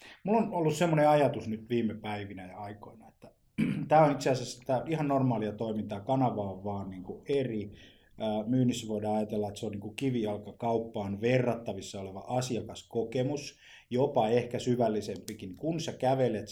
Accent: native